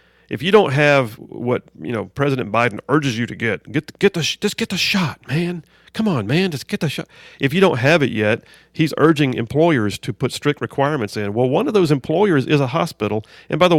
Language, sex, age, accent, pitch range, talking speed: English, male, 40-59, American, 105-145 Hz, 235 wpm